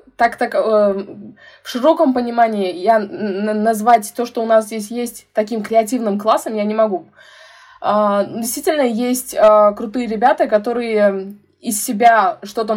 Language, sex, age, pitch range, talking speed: Russian, female, 20-39, 205-250 Hz, 120 wpm